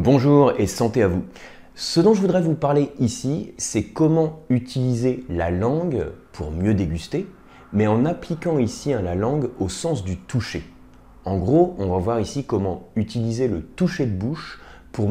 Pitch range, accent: 90-135 Hz, French